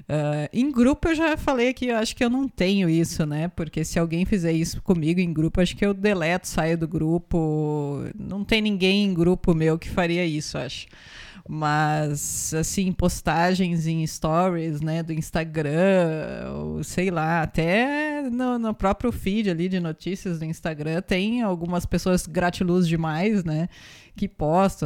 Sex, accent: female, Brazilian